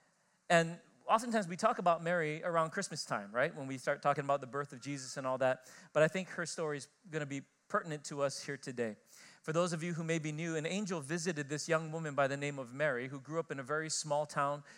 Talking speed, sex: 255 wpm, male